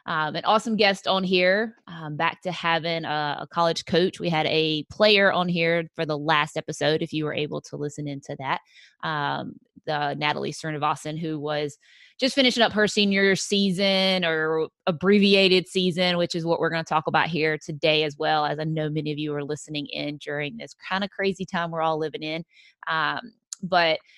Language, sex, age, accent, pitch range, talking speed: English, female, 20-39, American, 155-195 Hz, 200 wpm